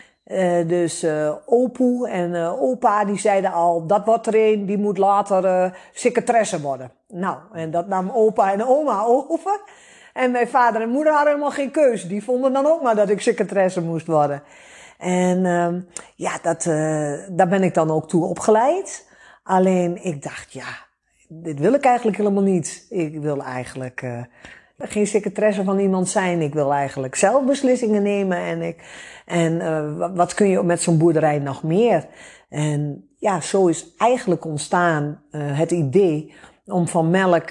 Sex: female